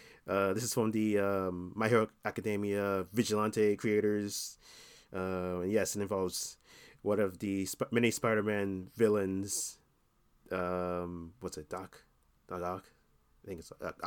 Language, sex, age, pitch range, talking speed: English, male, 30-49, 90-110 Hz, 135 wpm